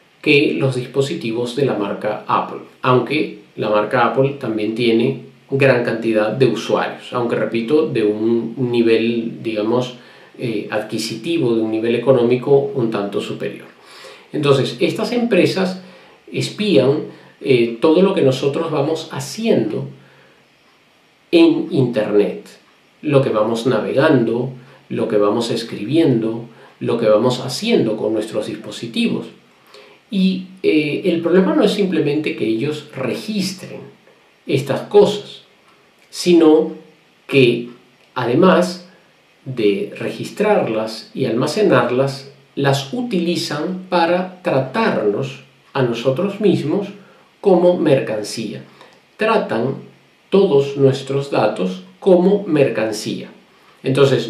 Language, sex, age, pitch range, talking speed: English, male, 40-59, 115-170 Hz, 105 wpm